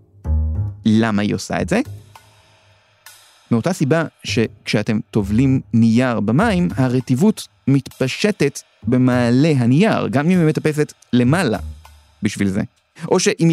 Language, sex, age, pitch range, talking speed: Hebrew, male, 30-49, 120-165 Hz, 105 wpm